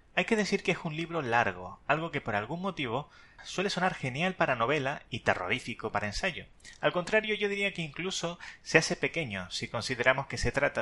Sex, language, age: male, Spanish, 30-49